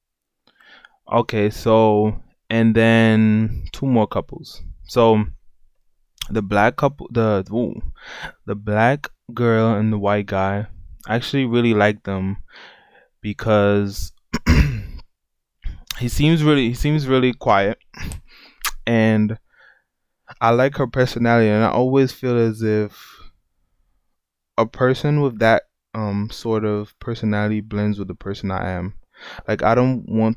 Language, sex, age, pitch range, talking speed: English, male, 20-39, 100-115 Hz, 125 wpm